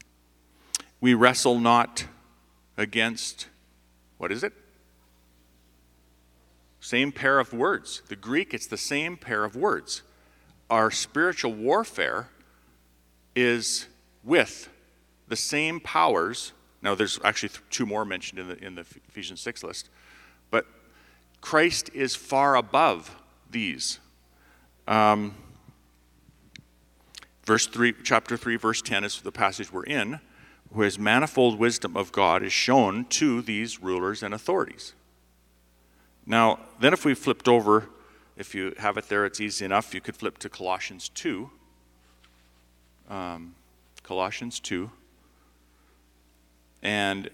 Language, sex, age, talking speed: English, male, 50-69, 120 wpm